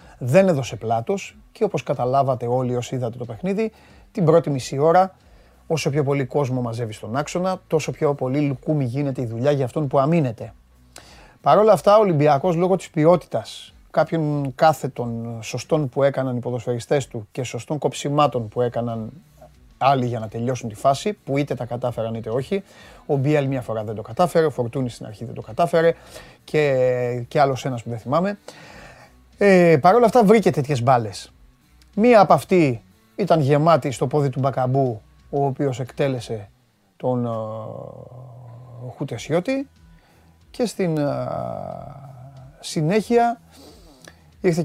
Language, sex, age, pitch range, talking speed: Greek, male, 30-49, 120-155 Hz, 150 wpm